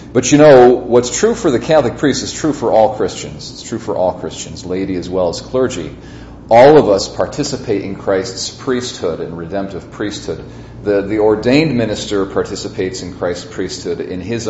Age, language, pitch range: 40-59, English, 90-115 Hz